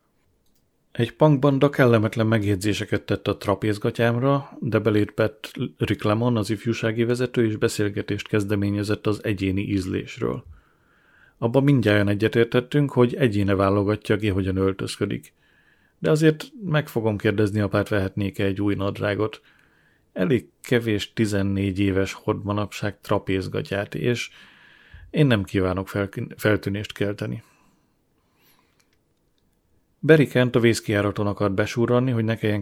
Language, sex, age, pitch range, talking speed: Hungarian, male, 30-49, 100-120 Hz, 110 wpm